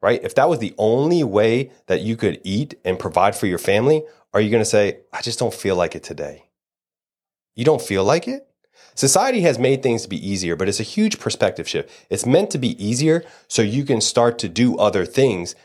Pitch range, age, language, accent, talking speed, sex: 95-150 Hz, 30-49, English, American, 225 wpm, male